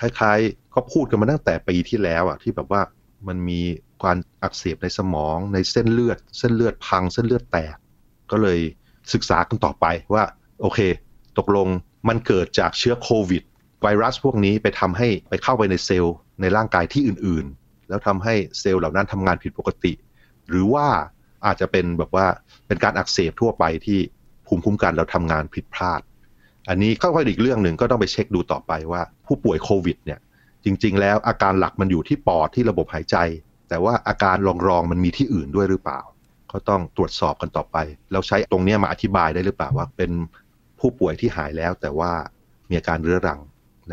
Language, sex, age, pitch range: Thai, male, 30-49, 85-105 Hz